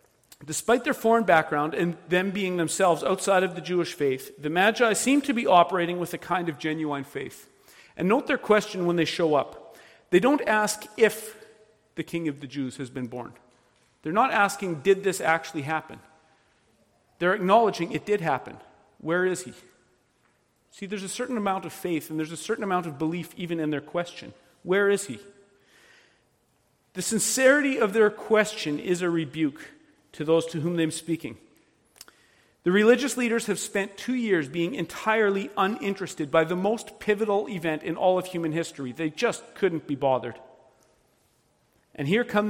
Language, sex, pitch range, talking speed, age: English, male, 155-210 Hz, 175 wpm, 40-59